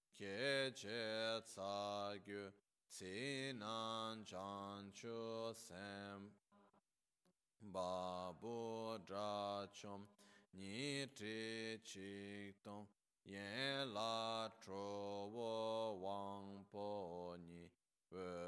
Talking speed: 50 wpm